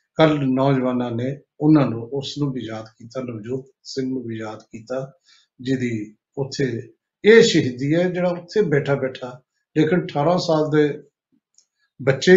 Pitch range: 130-160 Hz